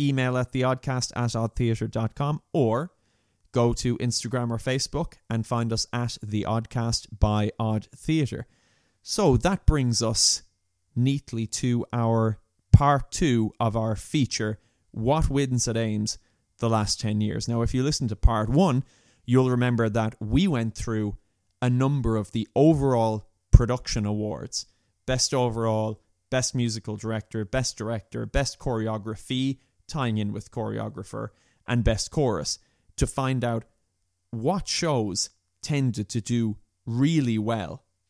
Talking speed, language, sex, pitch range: 130 wpm, English, male, 105-130 Hz